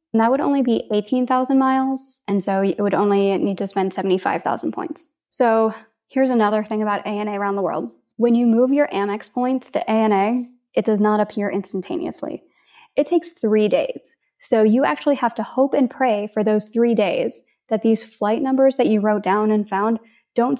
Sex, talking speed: female, 190 wpm